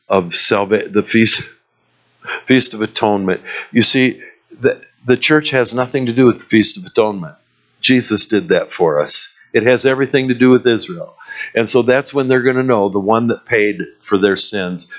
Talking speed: 190 wpm